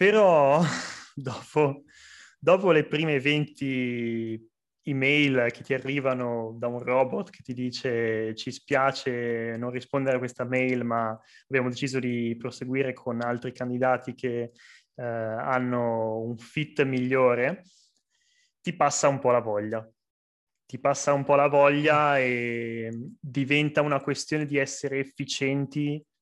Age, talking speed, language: 20-39, 130 wpm, Italian